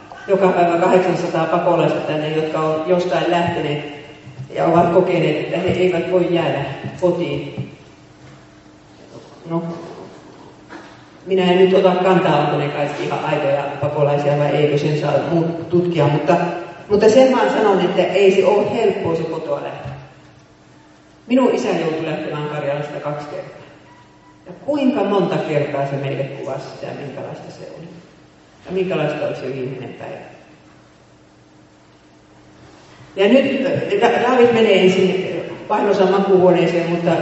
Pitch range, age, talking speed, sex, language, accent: 145-185 Hz, 40-59, 125 wpm, female, Finnish, native